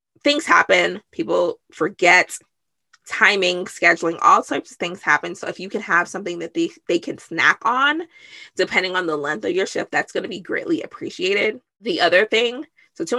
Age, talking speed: 20-39, 185 wpm